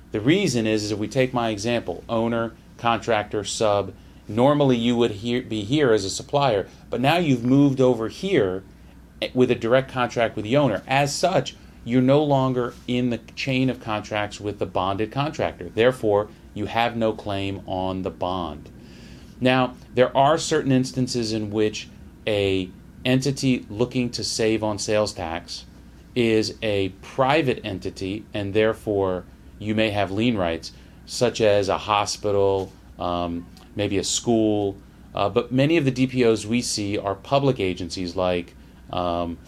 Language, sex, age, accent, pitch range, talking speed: English, male, 30-49, American, 95-125 Hz, 155 wpm